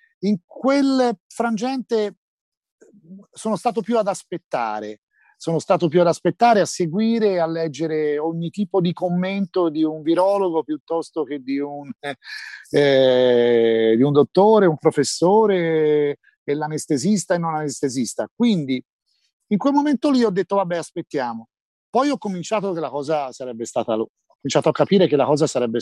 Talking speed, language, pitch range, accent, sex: 150 wpm, Italian, 135-195 Hz, native, male